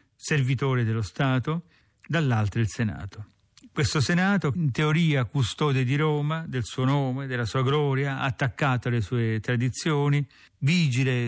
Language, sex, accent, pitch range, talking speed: Italian, male, native, 115-145 Hz, 130 wpm